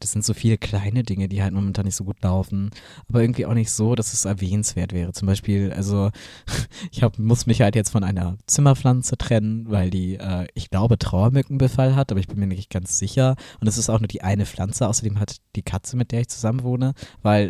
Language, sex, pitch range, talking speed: German, male, 100-120 Hz, 225 wpm